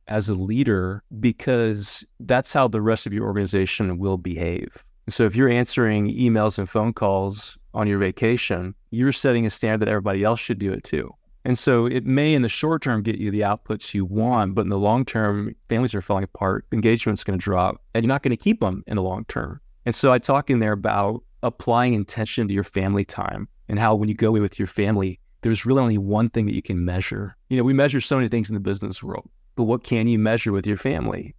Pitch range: 100-120 Hz